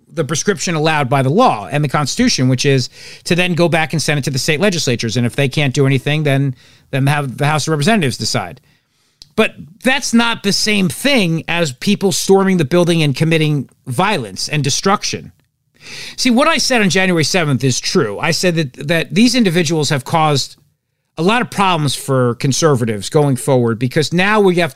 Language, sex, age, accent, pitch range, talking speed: English, male, 50-69, American, 140-180 Hz, 195 wpm